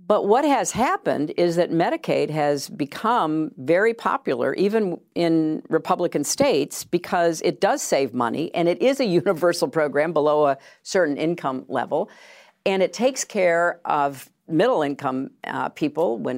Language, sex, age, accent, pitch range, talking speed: English, female, 50-69, American, 145-195 Hz, 145 wpm